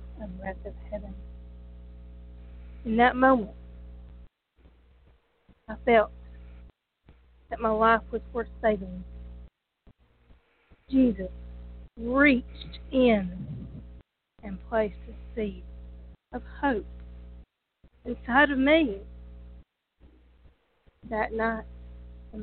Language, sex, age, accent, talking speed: English, female, 40-59, American, 80 wpm